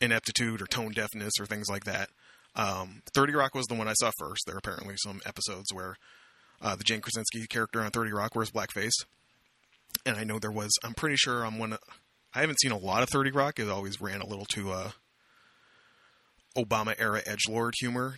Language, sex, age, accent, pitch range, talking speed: English, male, 30-49, American, 105-120 Hz, 210 wpm